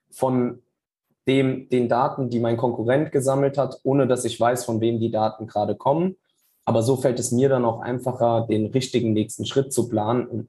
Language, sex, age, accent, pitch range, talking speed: German, male, 20-39, German, 110-130 Hz, 190 wpm